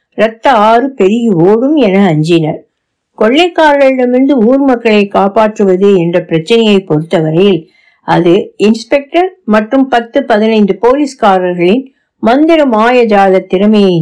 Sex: female